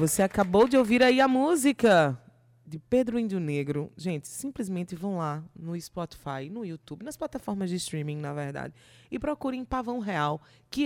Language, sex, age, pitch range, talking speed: Portuguese, female, 20-39, 165-225 Hz, 165 wpm